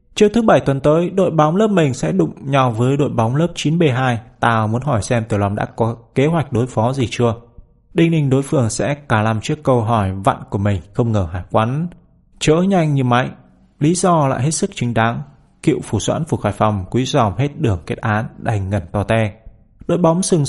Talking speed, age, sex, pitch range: 230 wpm, 20-39, male, 110-155 Hz